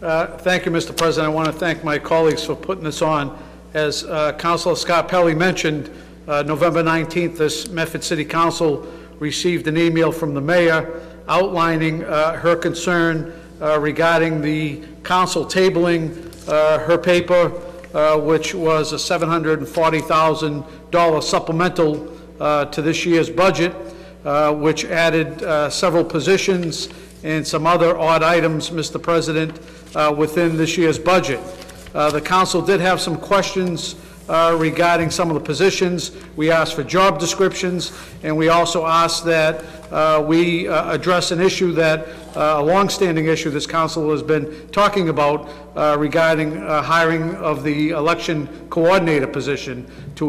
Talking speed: 150 wpm